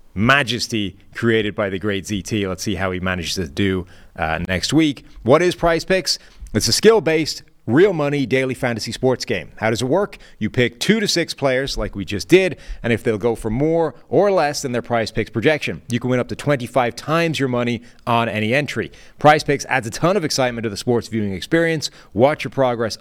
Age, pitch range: 30-49, 110-145 Hz